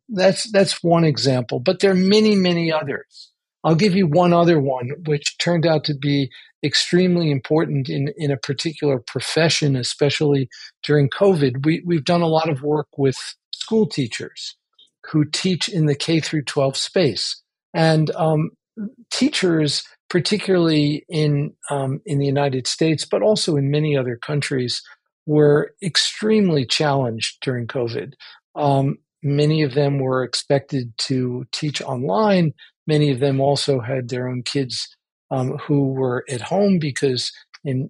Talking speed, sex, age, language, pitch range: 150 wpm, male, 50-69, English, 135-170 Hz